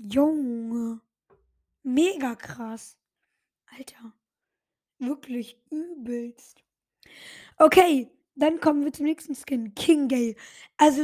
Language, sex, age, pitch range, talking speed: German, female, 20-39, 245-295 Hz, 85 wpm